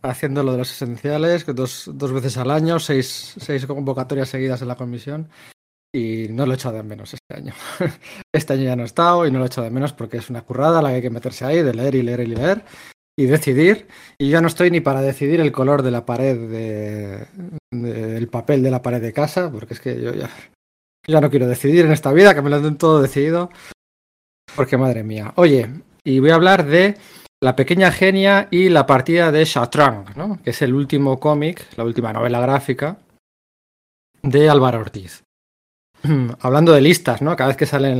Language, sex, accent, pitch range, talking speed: Spanish, male, Spanish, 125-155 Hz, 210 wpm